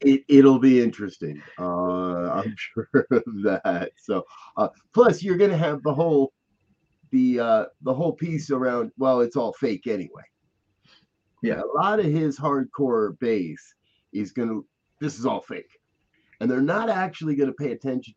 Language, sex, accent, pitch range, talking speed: English, male, American, 110-150 Hz, 160 wpm